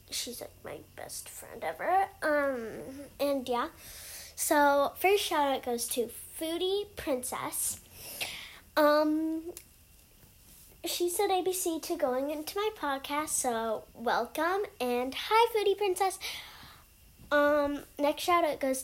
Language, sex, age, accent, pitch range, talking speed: English, female, 10-29, American, 255-330 Hz, 120 wpm